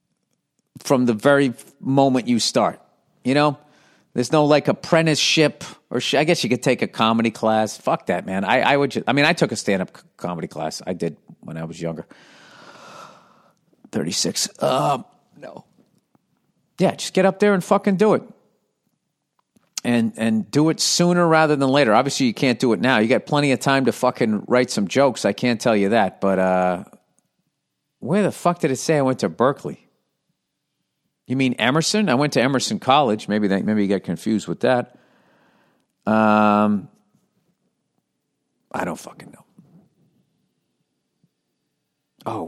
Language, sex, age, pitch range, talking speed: English, male, 50-69, 110-155 Hz, 170 wpm